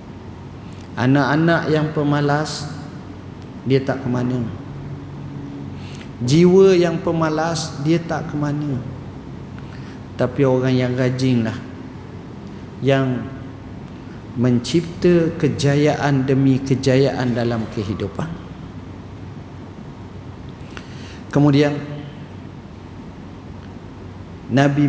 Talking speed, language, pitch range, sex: 65 wpm, Malay, 105-160 Hz, male